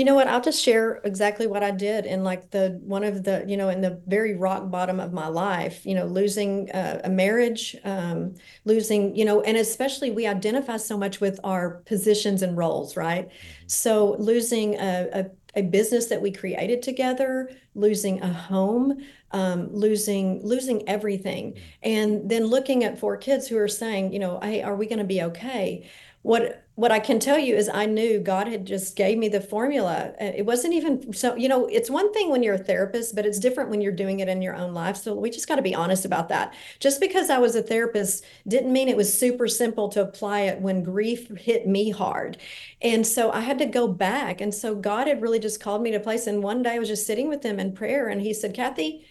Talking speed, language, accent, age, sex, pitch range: 225 wpm, English, American, 40-59, female, 195-240 Hz